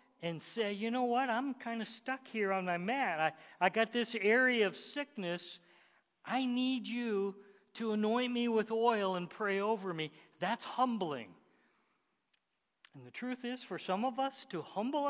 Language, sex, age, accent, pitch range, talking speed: English, male, 50-69, American, 175-225 Hz, 175 wpm